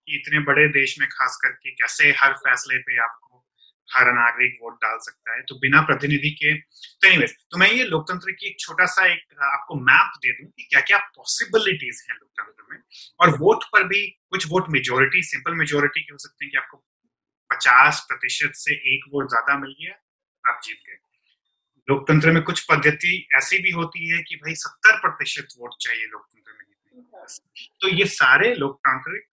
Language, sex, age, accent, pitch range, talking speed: Hindi, male, 30-49, native, 140-185 Hz, 155 wpm